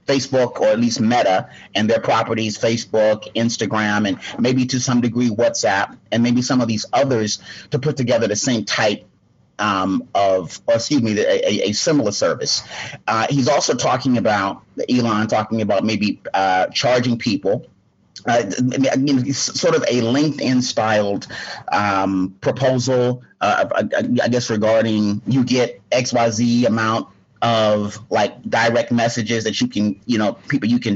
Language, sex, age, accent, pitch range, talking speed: English, male, 30-49, American, 110-125 Hz, 155 wpm